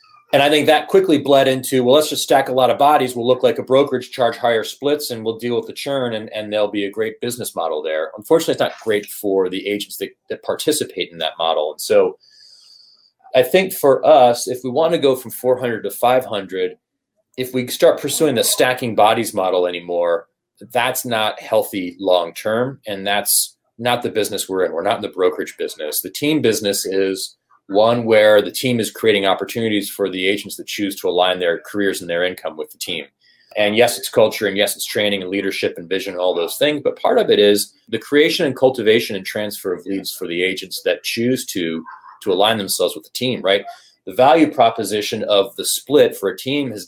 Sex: male